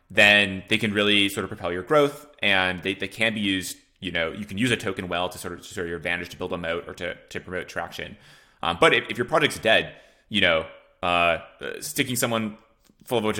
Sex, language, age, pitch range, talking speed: male, English, 20-39, 90-110 Hz, 250 wpm